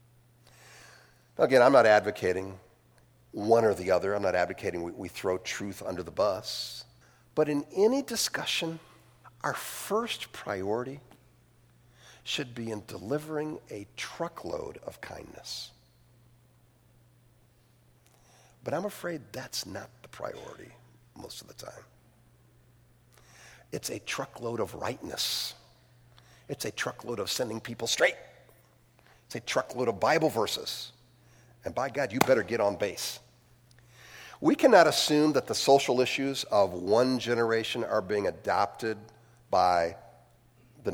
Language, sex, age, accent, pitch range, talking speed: English, male, 50-69, American, 115-145 Hz, 125 wpm